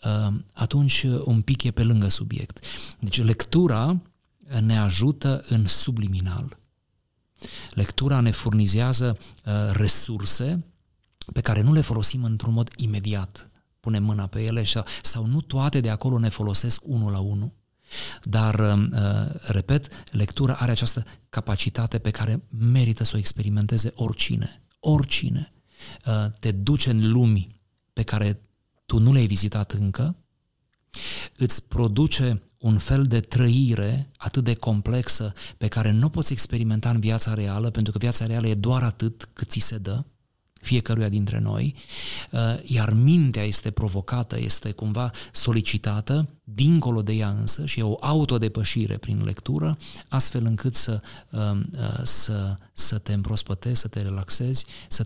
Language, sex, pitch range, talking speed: Romanian, male, 105-125 Hz, 140 wpm